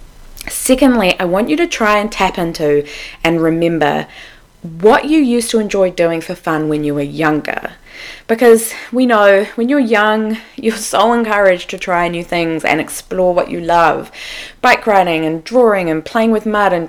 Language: English